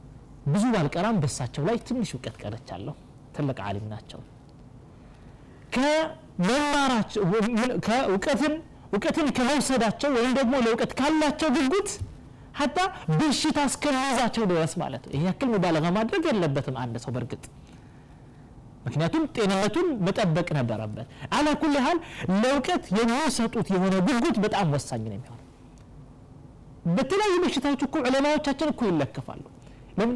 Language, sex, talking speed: Amharic, male, 70 wpm